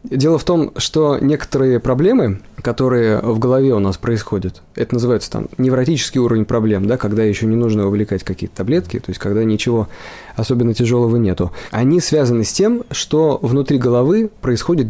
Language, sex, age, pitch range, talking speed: Russian, male, 20-39, 110-145 Hz, 165 wpm